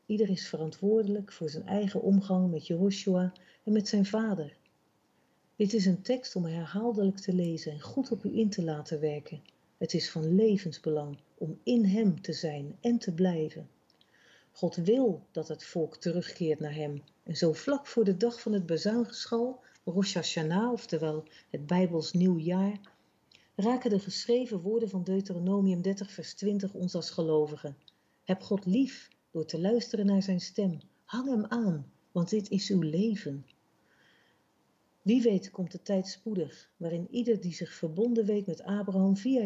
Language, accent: Dutch, Dutch